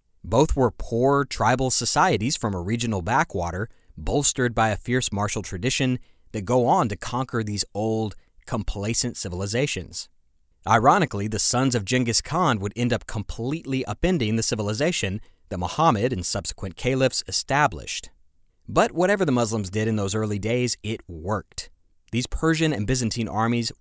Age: 30-49